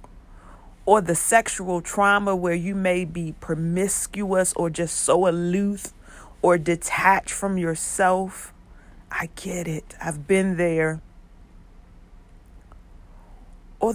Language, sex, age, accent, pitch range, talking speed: English, female, 40-59, American, 155-195 Hz, 105 wpm